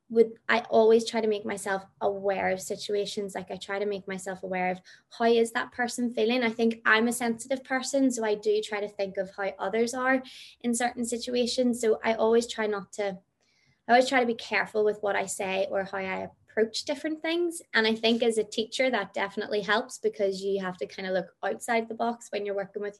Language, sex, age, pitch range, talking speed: English, female, 20-39, 195-235 Hz, 225 wpm